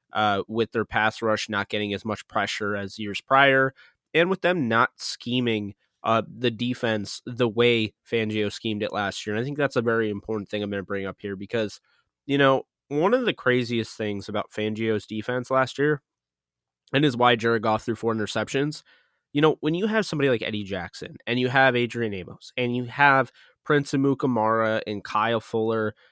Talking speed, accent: 195 wpm, American